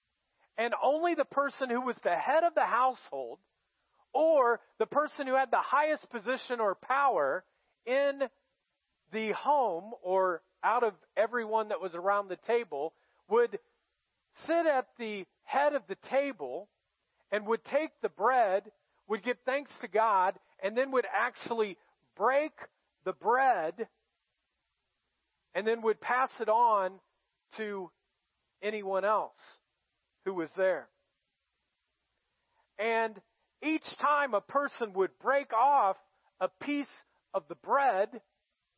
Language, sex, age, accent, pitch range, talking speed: English, male, 40-59, American, 205-285 Hz, 130 wpm